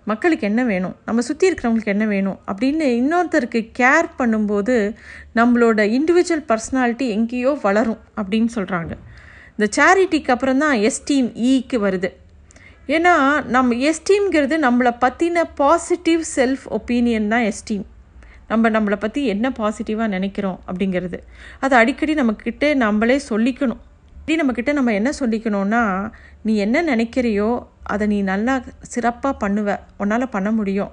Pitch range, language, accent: 220-280 Hz, Tamil, native